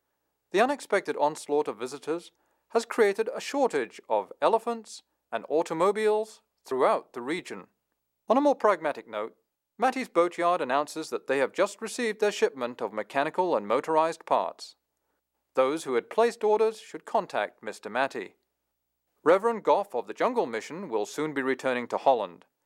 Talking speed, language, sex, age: 150 wpm, English, male, 40-59